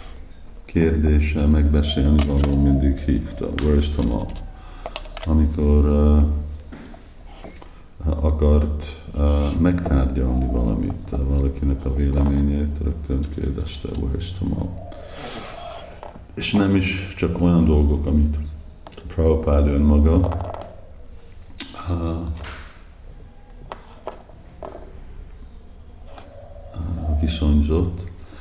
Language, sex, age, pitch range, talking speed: Hungarian, male, 50-69, 70-80 Hz, 70 wpm